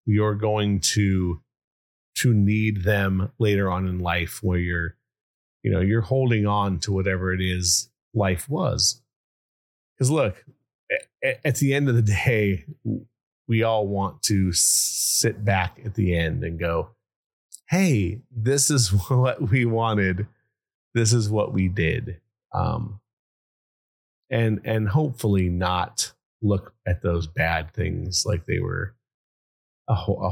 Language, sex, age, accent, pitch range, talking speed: English, male, 30-49, American, 95-115 Hz, 135 wpm